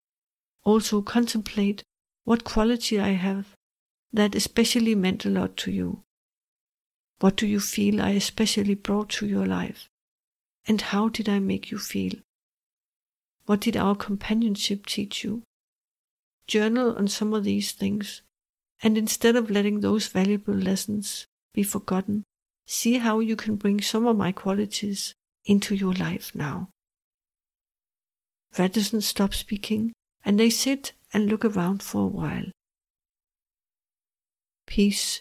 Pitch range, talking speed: 195-215 Hz, 130 wpm